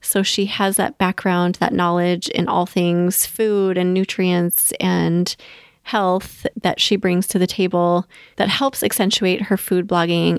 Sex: female